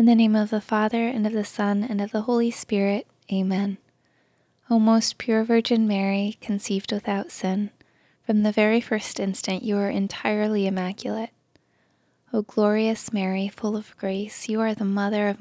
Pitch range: 195-220 Hz